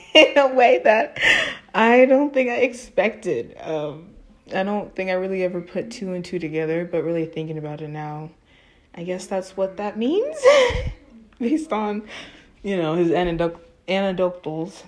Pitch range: 170-215 Hz